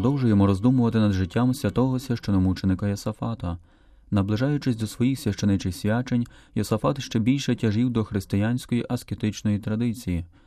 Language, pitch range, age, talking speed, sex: Ukrainian, 95-120 Hz, 30-49, 115 wpm, male